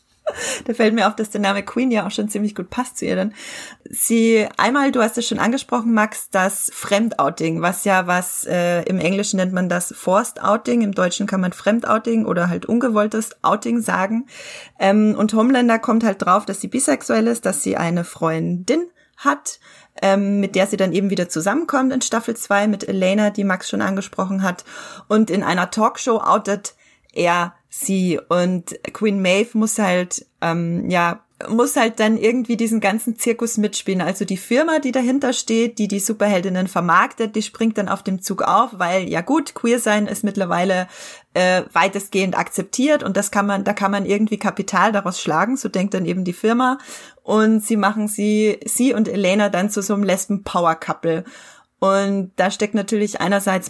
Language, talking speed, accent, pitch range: German, 185 wpm, German, 190-230 Hz